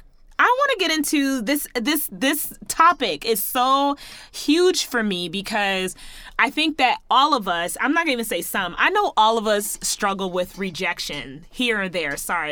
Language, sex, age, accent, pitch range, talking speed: English, female, 20-39, American, 190-275 Hz, 180 wpm